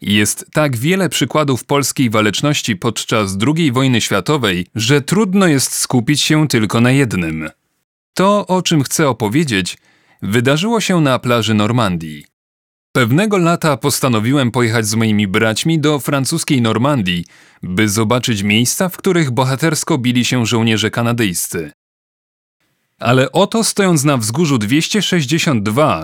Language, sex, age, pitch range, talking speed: Polish, male, 30-49, 115-150 Hz, 125 wpm